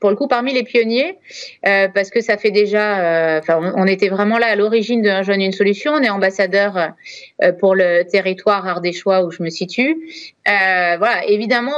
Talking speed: 200 wpm